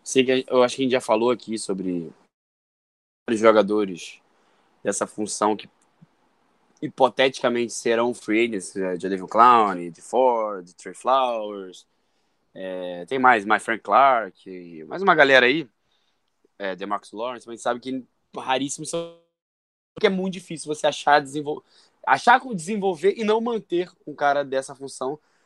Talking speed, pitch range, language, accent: 150 wpm, 115-150 Hz, Portuguese, Brazilian